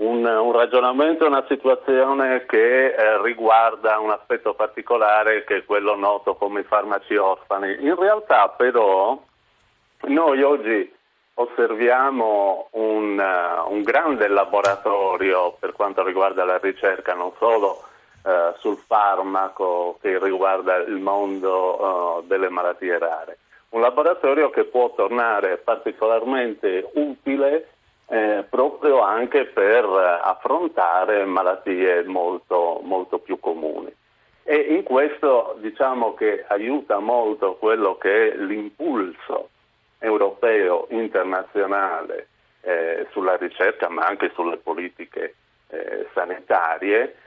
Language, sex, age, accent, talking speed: Italian, male, 40-59, native, 105 wpm